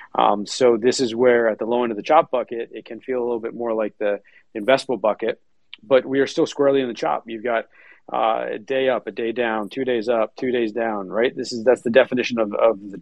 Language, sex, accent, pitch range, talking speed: English, male, American, 110-125 Hz, 260 wpm